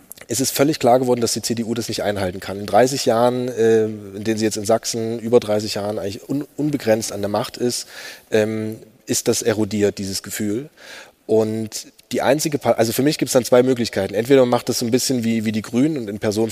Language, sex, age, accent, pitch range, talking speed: German, male, 30-49, German, 105-125 Hz, 220 wpm